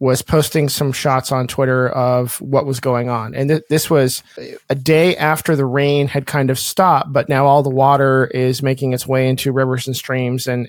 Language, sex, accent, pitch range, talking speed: English, male, American, 125-140 Hz, 210 wpm